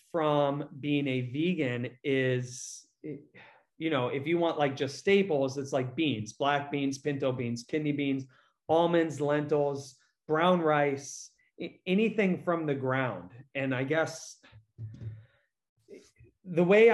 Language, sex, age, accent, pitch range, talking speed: English, male, 30-49, American, 130-160 Hz, 125 wpm